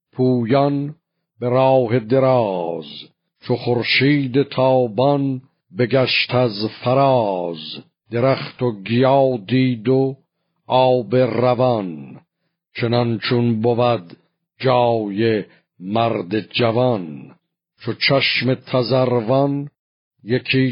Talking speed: 75 wpm